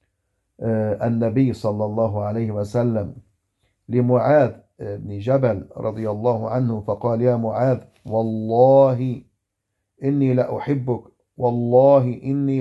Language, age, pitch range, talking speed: English, 50-69, 105-140 Hz, 95 wpm